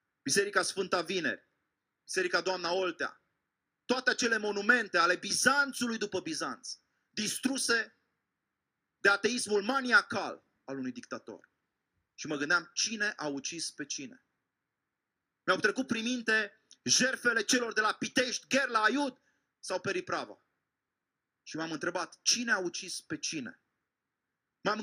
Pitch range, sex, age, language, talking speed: 190-250 Hz, male, 30-49, Romanian, 120 wpm